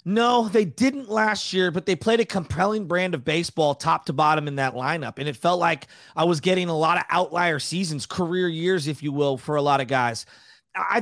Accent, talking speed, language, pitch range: American, 230 wpm, English, 170-230 Hz